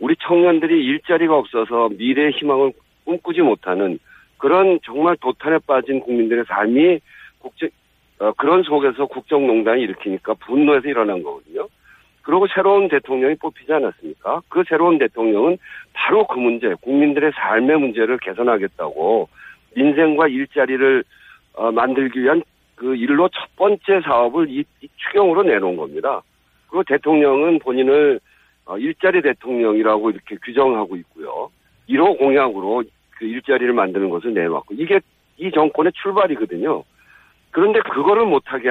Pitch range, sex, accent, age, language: 130-195 Hz, male, native, 50-69, Korean